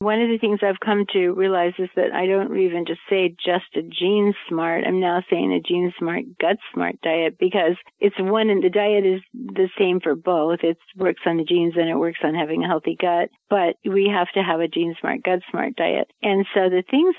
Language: English